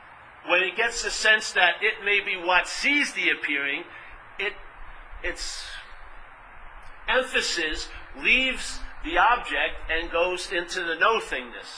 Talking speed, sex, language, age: 120 wpm, male, English, 50-69